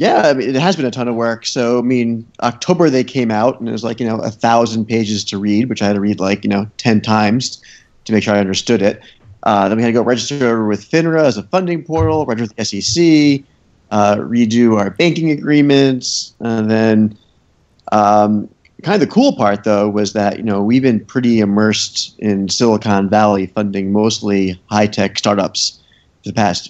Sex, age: male, 30-49